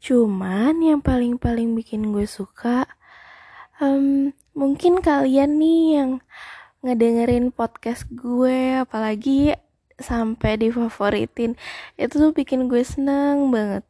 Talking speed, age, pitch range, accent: 105 wpm, 20-39, 195-250 Hz, native